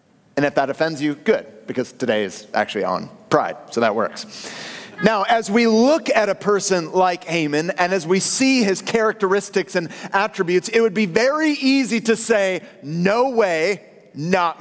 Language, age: English, 30-49